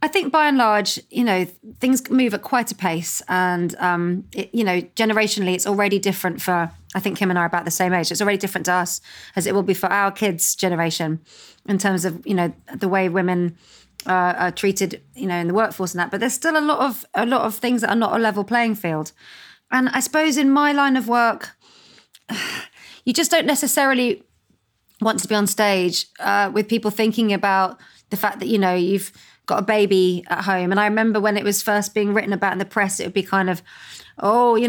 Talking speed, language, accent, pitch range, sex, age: 230 wpm, English, British, 190-225 Hz, female, 30-49